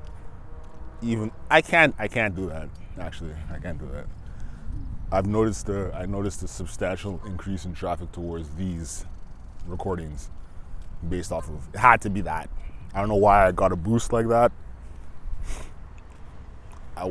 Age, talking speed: 20-39, 155 wpm